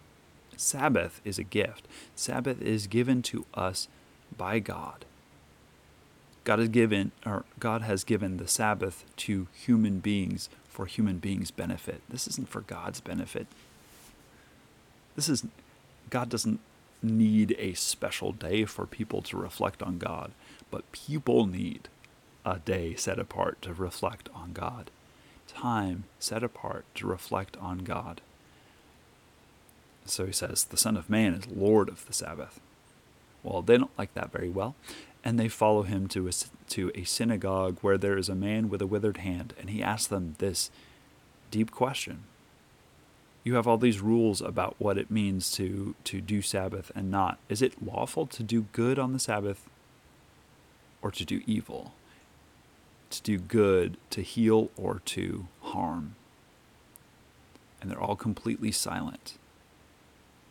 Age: 30-49